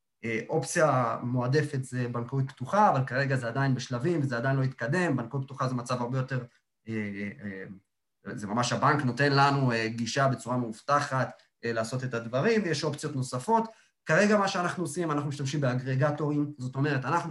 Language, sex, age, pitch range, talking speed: Hebrew, male, 30-49, 120-150 Hz, 155 wpm